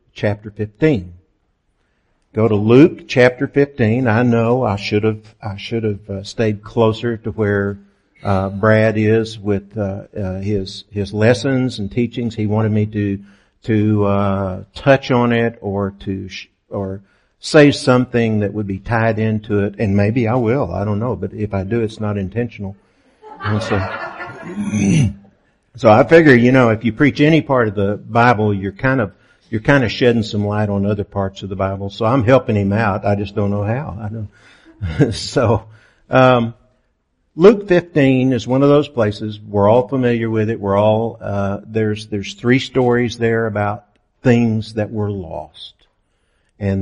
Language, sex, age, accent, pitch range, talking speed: English, male, 60-79, American, 100-120 Hz, 175 wpm